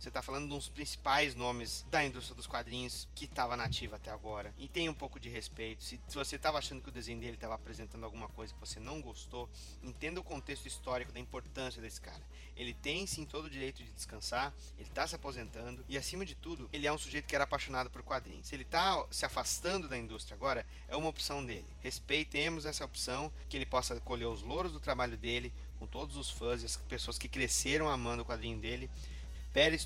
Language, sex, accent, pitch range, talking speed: Portuguese, male, Brazilian, 115-145 Hz, 215 wpm